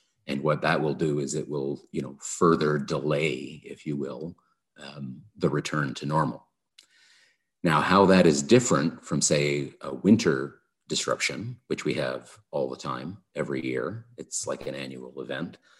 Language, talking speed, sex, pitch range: English, 165 wpm, male, 70-80 Hz